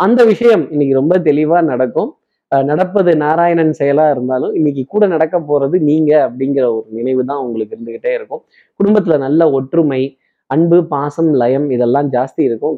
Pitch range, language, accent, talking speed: 135-180 Hz, Tamil, native, 145 wpm